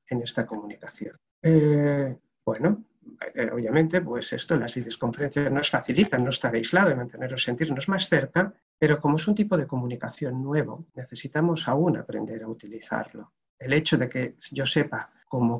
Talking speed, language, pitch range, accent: 155 wpm, Spanish, 120-160 Hz, Spanish